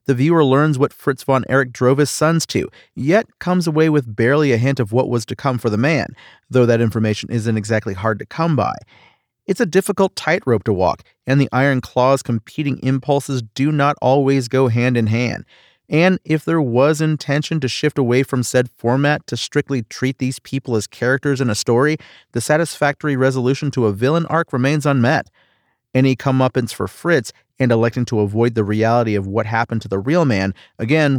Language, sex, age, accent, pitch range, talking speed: English, male, 30-49, American, 115-145 Hz, 195 wpm